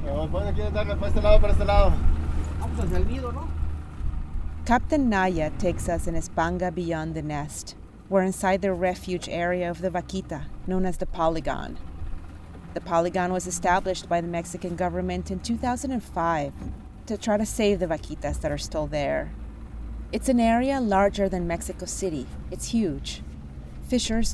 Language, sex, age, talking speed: English, female, 30-49, 125 wpm